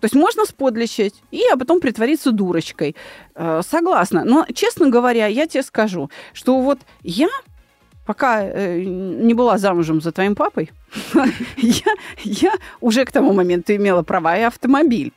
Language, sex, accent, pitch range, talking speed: Russian, female, native, 205-270 Hz, 140 wpm